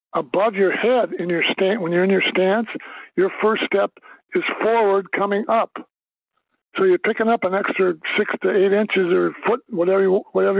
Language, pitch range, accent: English, 185-225 Hz, American